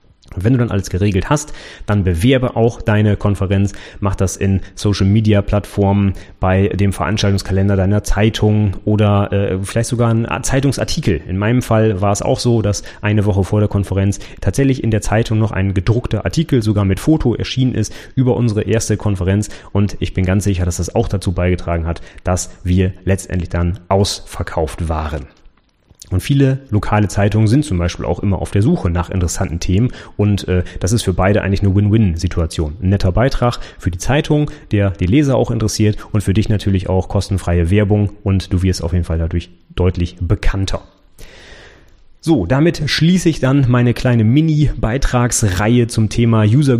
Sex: male